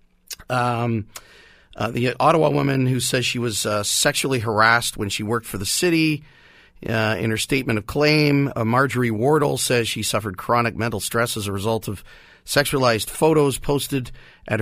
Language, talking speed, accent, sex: English, 170 wpm, American, male